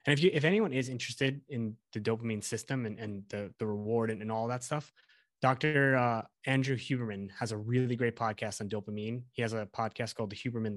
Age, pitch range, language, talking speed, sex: 20-39, 110-130 Hz, English, 215 wpm, male